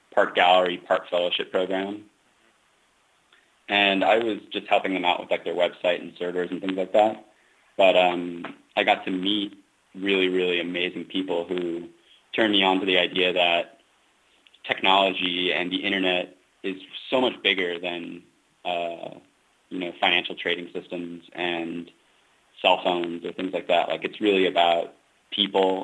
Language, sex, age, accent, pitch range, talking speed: English, male, 30-49, American, 85-95 Hz, 155 wpm